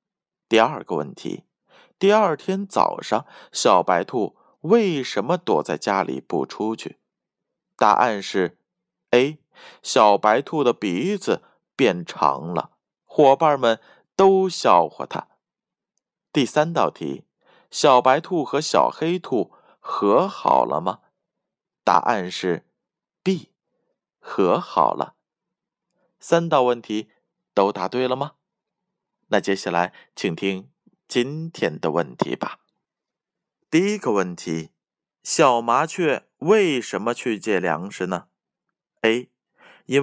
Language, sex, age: Chinese, male, 20-39